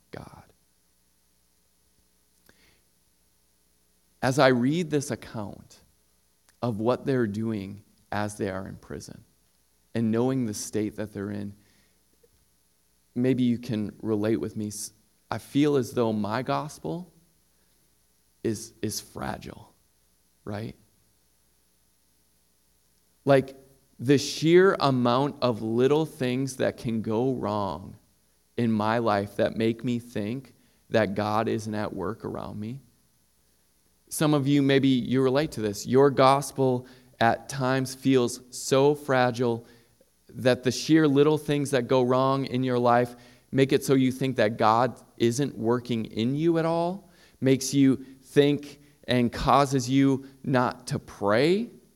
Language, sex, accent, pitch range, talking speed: English, male, American, 95-135 Hz, 130 wpm